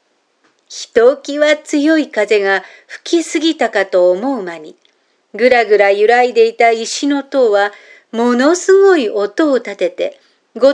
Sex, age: female, 50-69